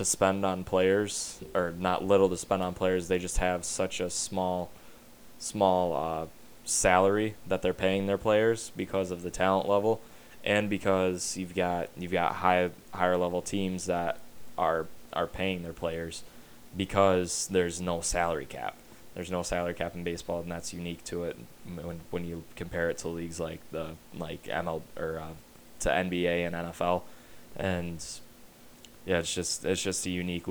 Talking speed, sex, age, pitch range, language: 170 wpm, male, 20-39, 85-95 Hz, English